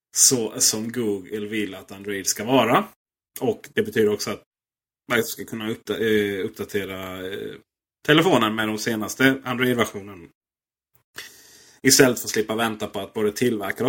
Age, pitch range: 30-49, 100-135 Hz